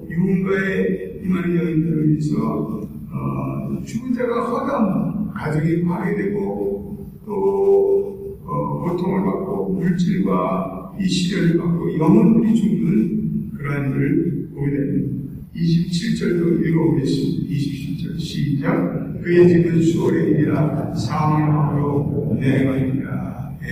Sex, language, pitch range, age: male, Korean, 160-210 Hz, 50-69